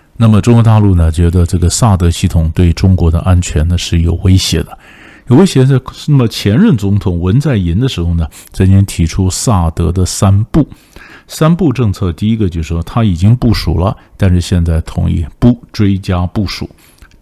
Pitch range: 85-110 Hz